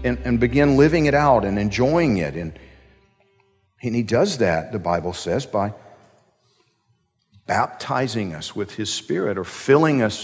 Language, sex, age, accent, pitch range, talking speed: English, male, 50-69, American, 115-150 Hz, 150 wpm